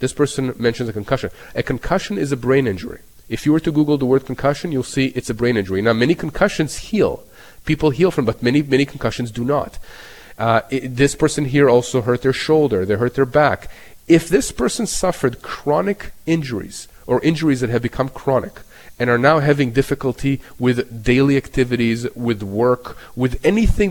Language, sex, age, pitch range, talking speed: English, male, 40-59, 120-145 Hz, 190 wpm